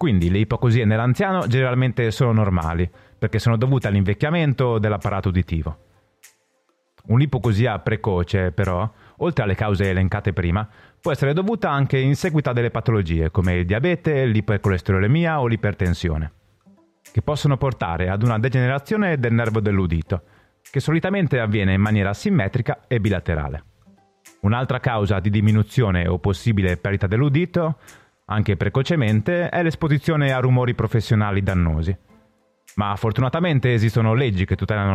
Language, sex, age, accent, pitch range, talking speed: Italian, male, 30-49, native, 95-135 Hz, 130 wpm